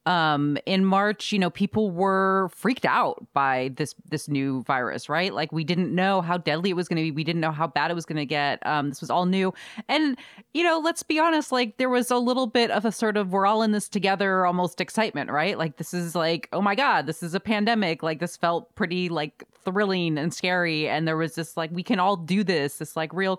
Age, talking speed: 30-49, 250 wpm